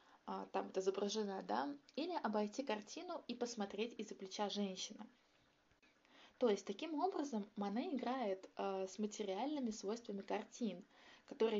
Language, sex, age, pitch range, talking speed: Russian, female, 20-39, 205-265 Hz, 125 wpm